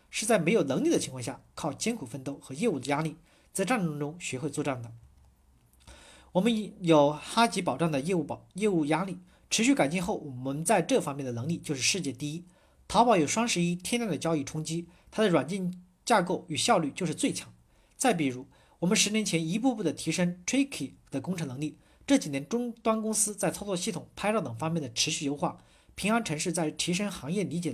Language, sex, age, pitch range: Chinese, male, 40-59, 140-195 Hz